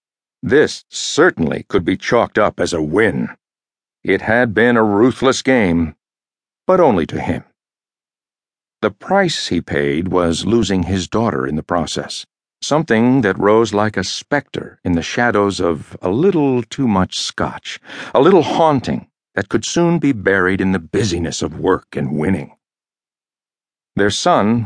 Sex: male